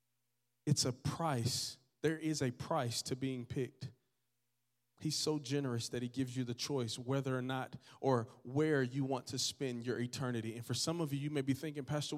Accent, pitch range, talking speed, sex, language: American, 125-155 Hz, 195 wpm, male, English